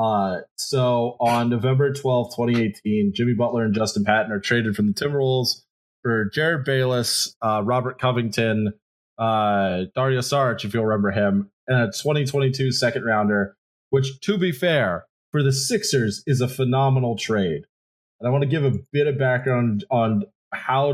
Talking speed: 165 wpm